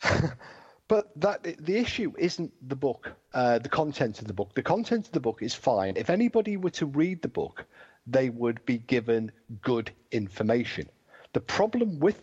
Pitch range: 115-155 Hz